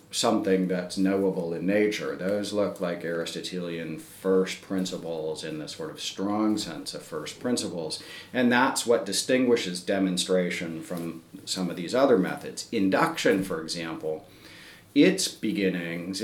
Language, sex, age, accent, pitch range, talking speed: English, male, 40-59, American, 85-100 Hz, 135 wpm